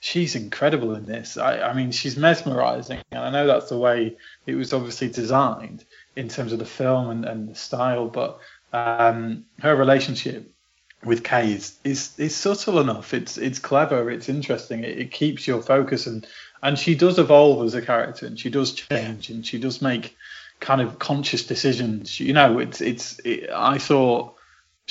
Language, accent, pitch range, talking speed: English, British, 120-140 Hz, 185 wpm